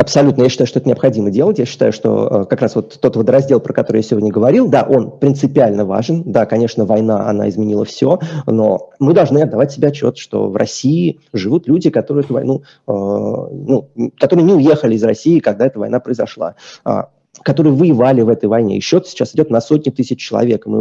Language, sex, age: Russian, male, 20-39